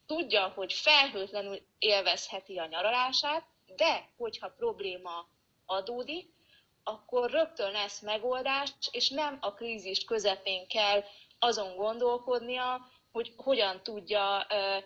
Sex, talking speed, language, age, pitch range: female, 100 wpm, Hungarian, 30-49, 195-250 Hz